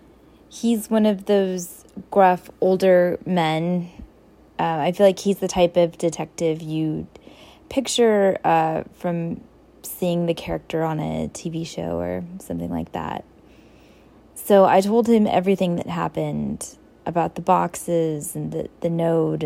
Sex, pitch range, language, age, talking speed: female, 165-200 Hz, English, 20-39, 140 wpm